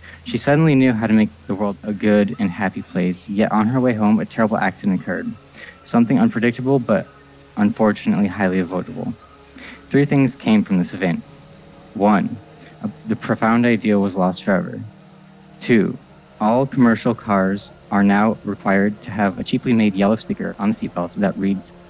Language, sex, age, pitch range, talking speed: English, male, 20-39, 100-120 Hz, 165 wpm